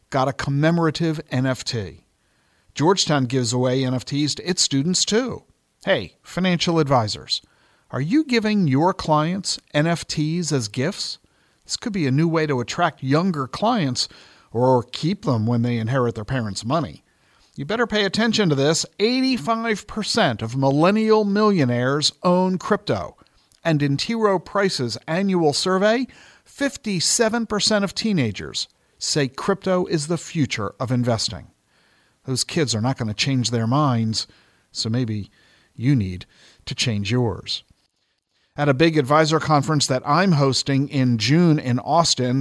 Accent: American